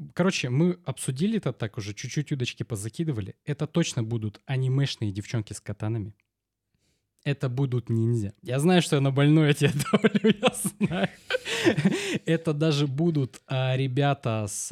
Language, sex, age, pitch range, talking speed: Russian, male, 20-39, 115-150 Hz, 130 wpm